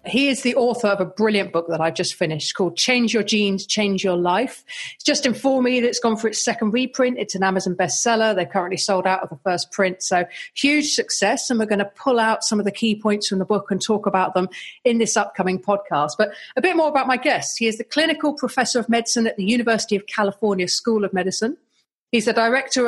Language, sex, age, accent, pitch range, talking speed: English, female, 40-59, British, 190-235 Hz, 240 wpm